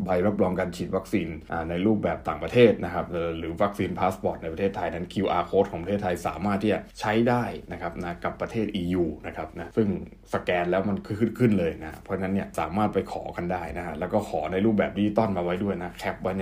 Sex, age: male, 20-39